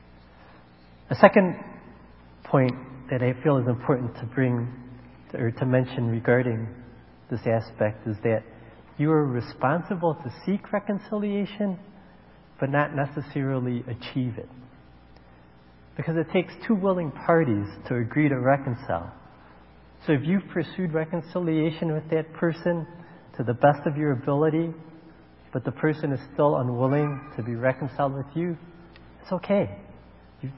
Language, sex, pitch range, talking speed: English, male, 115-160 Hz, 135 wpm